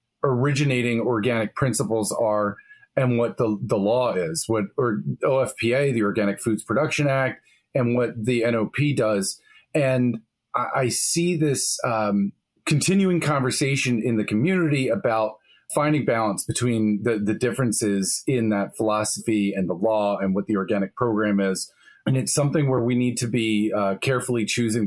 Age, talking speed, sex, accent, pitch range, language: 30-49, 155 wpm, male, American, 105-135 Hz, English